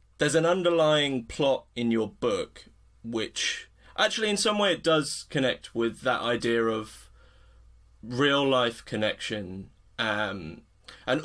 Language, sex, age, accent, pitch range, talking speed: English, male, 20-39, British, 100-135 Hz, 130 wpm